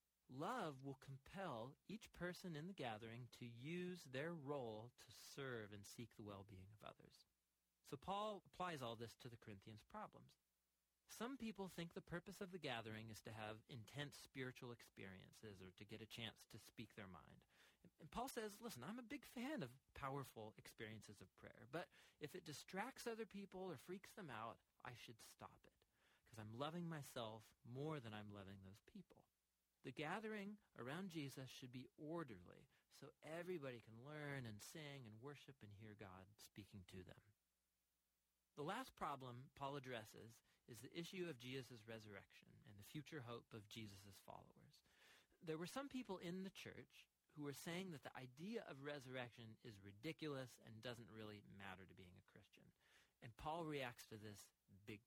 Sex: male